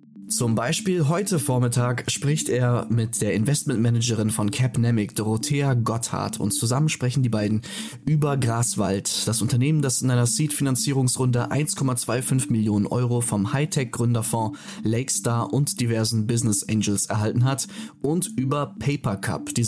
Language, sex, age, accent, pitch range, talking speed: German, male, 20-39, German, 110-135 Hz, 130 wpm